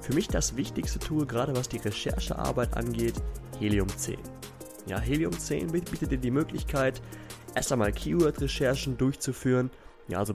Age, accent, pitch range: 20-39, German, 105-120 Hz